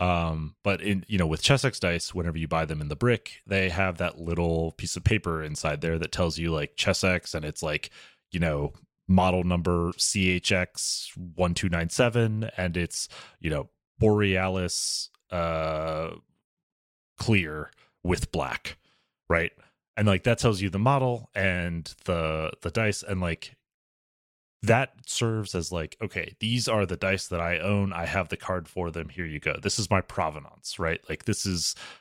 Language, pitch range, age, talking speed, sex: English, 85-105 Hz, 30-49, 165 wpm, male